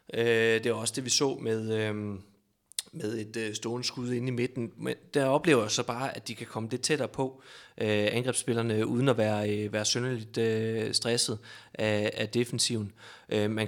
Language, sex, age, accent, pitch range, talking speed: Danish, male, 30-49, native, 115-130 Hz, 165 wpm